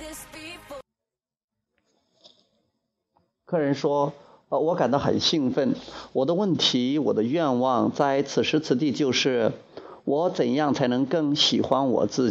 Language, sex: Chinese, male